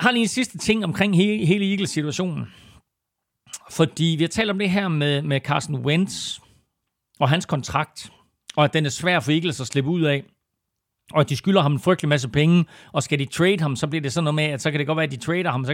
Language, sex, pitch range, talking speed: Danish, male, 130-170 Hz, 250 wpm